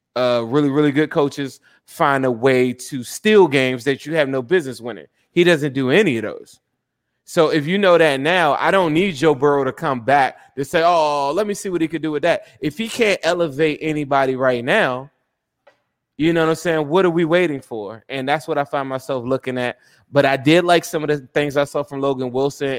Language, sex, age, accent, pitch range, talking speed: English, male, 20-39, American, 130-160 Hz, 230 wpm